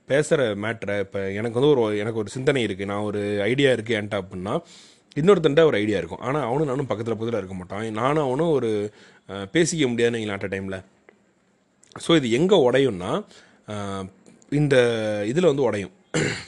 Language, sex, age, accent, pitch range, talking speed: Tamil, male, 30-49, native, 100-135 Hz, 160 wpm